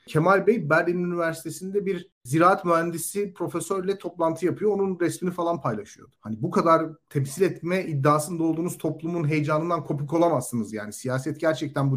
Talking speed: 145 wpm